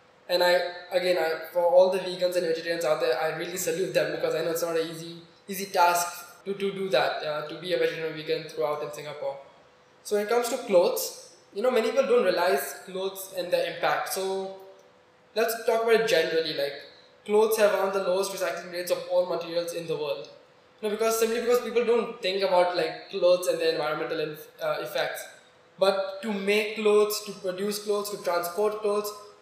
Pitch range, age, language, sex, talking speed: 170-210 Hz, 20-39, English, male, 210 wpm